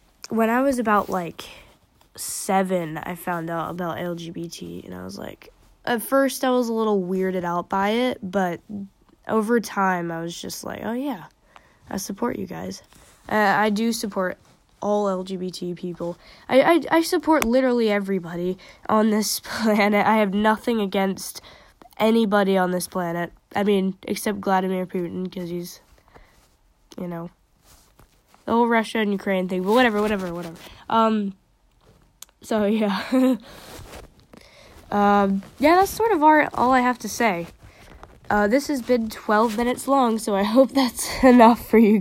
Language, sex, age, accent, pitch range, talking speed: English, female, 10-29, American, 185-235 Hz, 155 wpm